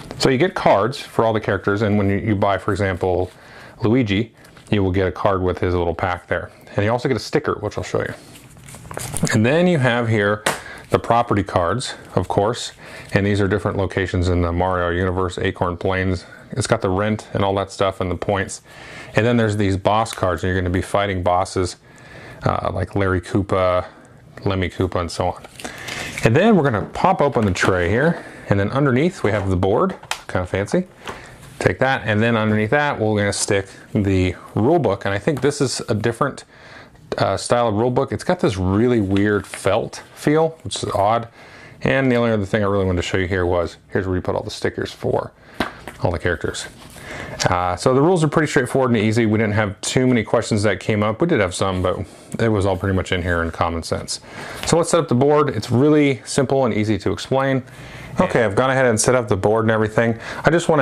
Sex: male